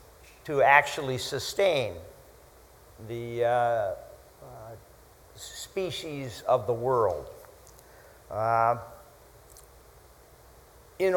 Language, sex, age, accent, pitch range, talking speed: English, male, 50-69, American, 115-165 Hz, 65 wpm